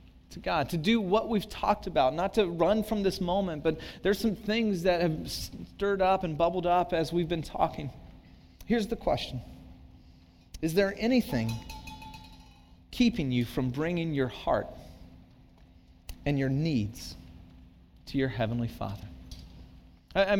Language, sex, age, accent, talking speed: English, male, 30-49, American, 145 wpm